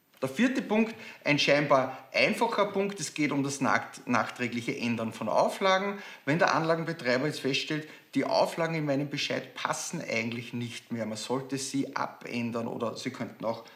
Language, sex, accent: German, male, Austrian